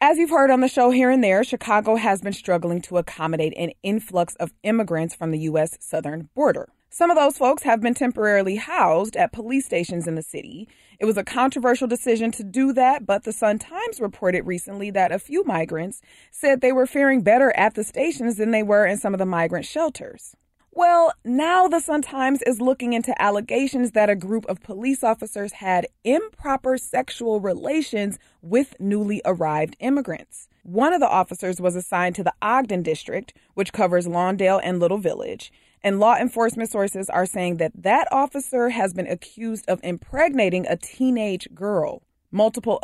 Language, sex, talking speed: English, female, 180 wpm